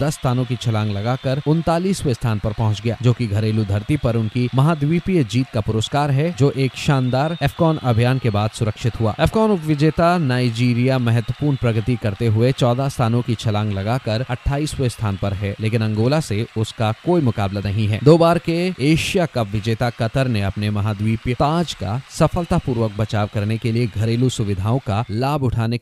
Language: Hindi